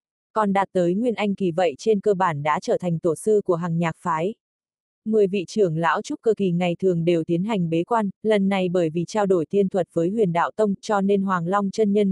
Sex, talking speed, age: female, 255 wpm, 20-39